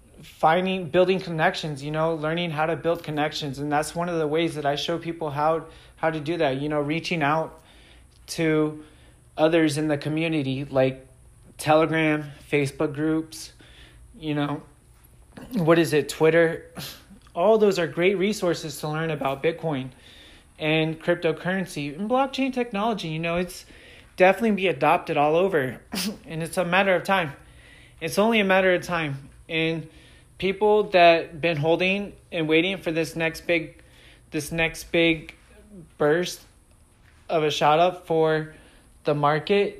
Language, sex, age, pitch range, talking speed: English, male, 30-49, 150-180 Hz, 150 wpm